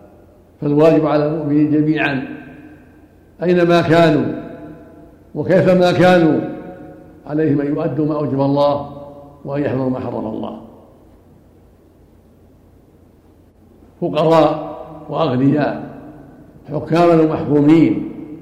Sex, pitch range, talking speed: male, 105-160 Hz, 70 wpm